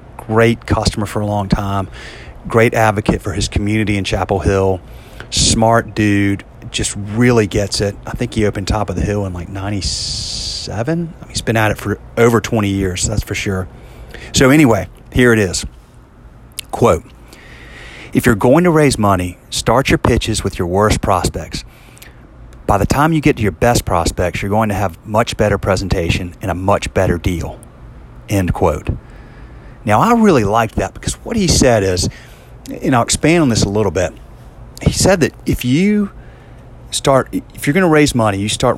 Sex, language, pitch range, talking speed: male, English, 95-115 Hz, 180 wpm